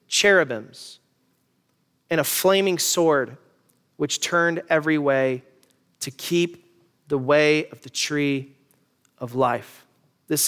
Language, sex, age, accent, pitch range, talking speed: English, male, 30-49, American, 175-285 Hz, 110 wpm